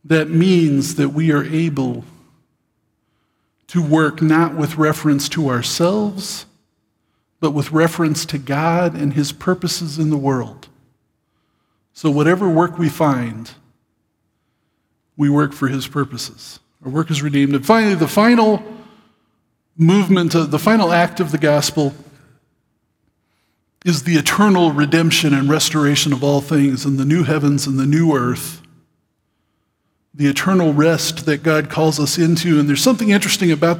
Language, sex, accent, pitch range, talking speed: English, male, American, 145-170 Hz, 140 wpm